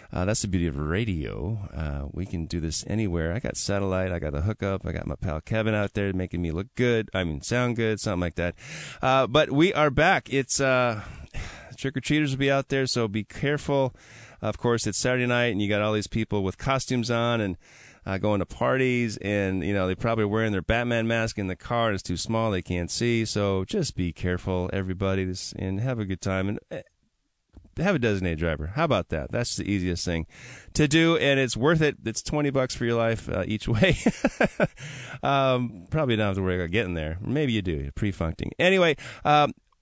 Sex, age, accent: male, 30-49, American